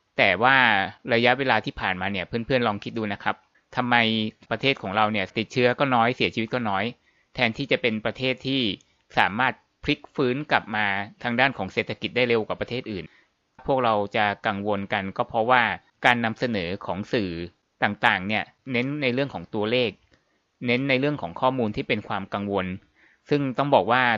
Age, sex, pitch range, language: 20-39, male, 105-125 Hz, Thai